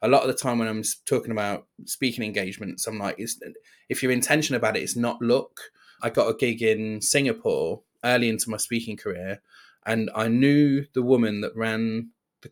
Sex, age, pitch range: male, 20-39, 110-130 Hz